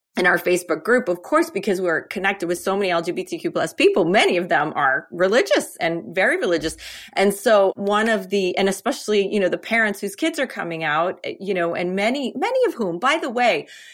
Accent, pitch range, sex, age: American, 185-225 Hz, female, 30-49